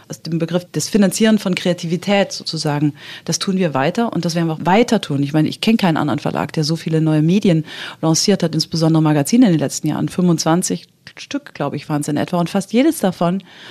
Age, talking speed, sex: 40-59, 225 wpm, female